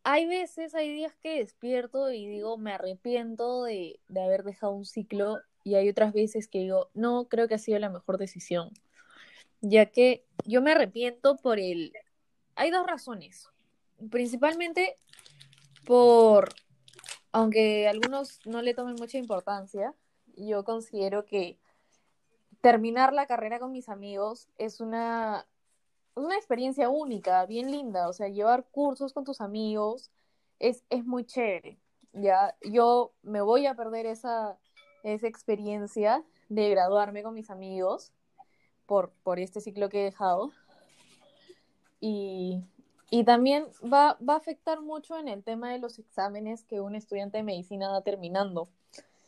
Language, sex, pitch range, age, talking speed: Spanish, female, 200-245 Hz, 10-29, 145 wpm